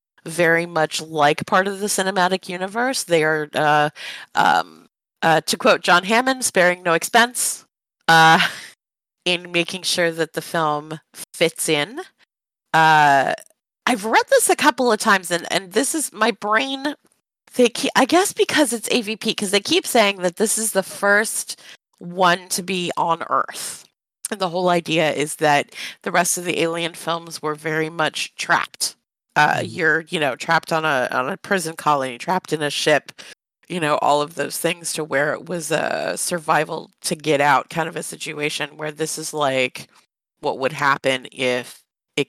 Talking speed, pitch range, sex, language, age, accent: 170 wpm, 150-195 Hz, female, English, 30-49, American